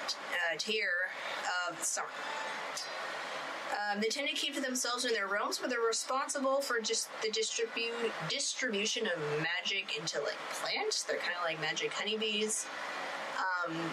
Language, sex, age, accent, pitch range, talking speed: English, female, 20-39, American, 210-270 Hz, 150 wpm